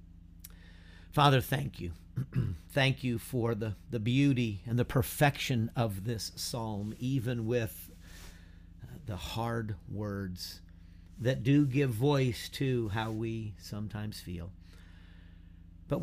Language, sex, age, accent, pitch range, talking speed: English, male, 50-69, American, 90-125 Hz, 115 wpm